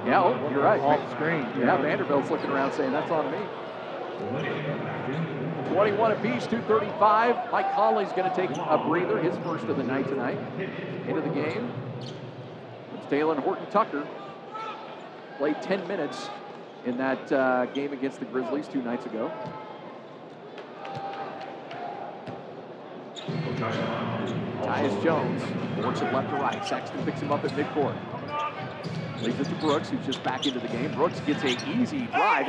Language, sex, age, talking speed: English, male, 40-59, 145 wpm